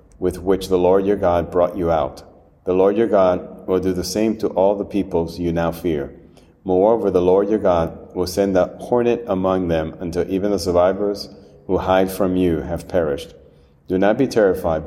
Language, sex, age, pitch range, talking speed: English, male, 30-49, 85-95 Hz, 200 wpm